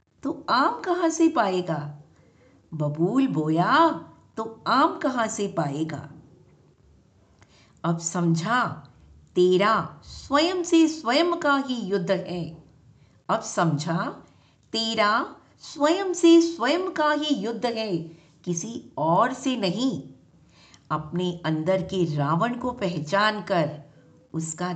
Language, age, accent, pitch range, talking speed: Hindi, 50-69, native, 160-260 Hz, 105 wpm